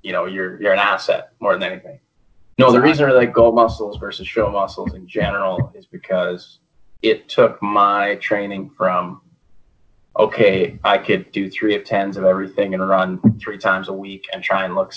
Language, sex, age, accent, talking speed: English, male, 20-39, American, 190 wpm